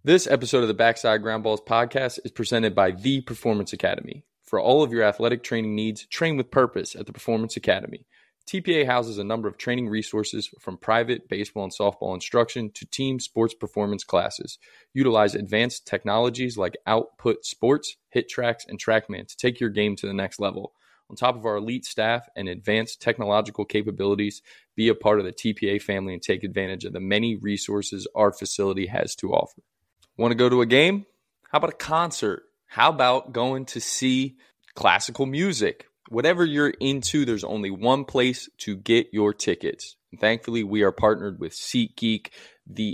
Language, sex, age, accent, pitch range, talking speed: English, male, 20-39, American, 100-125 Hz, 180 wpm